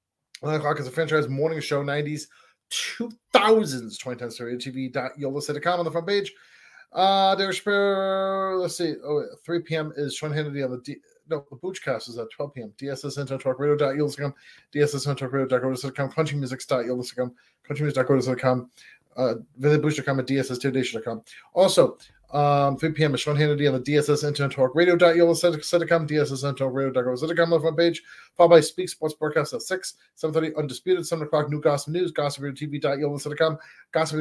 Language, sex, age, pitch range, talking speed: English, male, 30-49, 140-165 Hz, 155 wpm